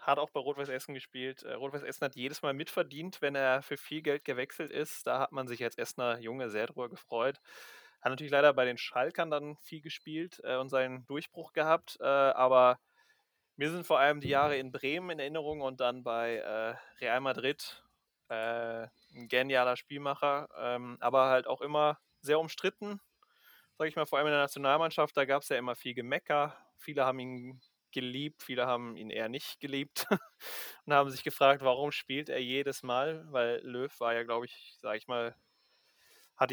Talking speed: 180 wpm